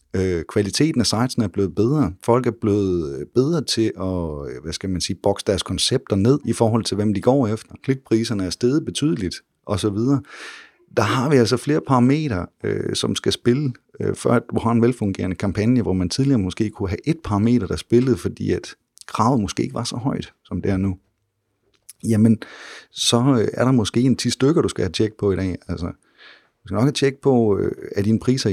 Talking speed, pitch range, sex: 200 wpm, 95-120 Hz, male